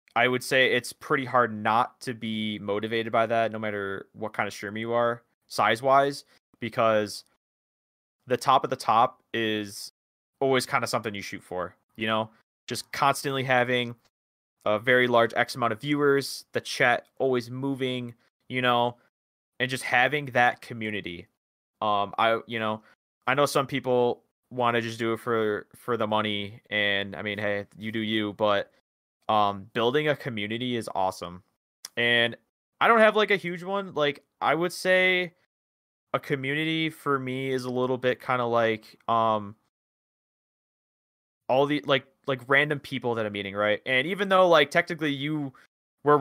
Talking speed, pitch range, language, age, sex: 170 wpm, 105-135 Hz, English, 20-39, male